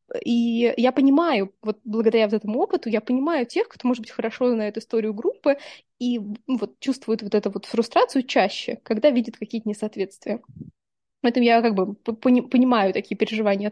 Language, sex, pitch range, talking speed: Russian, female, 210-245 Hz, 160 wpm